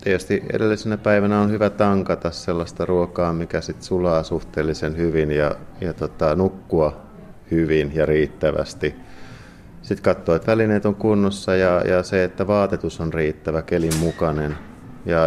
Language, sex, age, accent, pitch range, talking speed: Finnish, male, 30-49, native, 80-100 Hz, 140 wpm